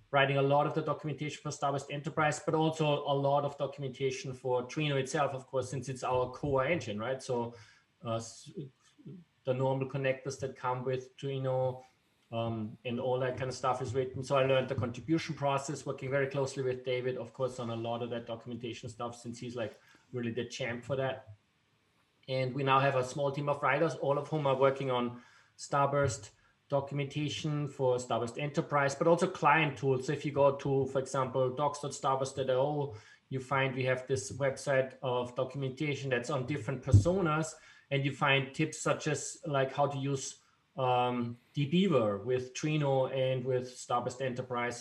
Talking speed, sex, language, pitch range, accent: 180 wpm, male, English, 125-140 Hz, German